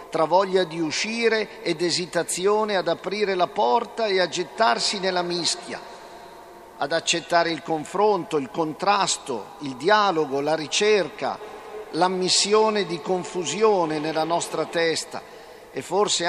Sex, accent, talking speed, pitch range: male, native, 120 wpm, 140-185 Hz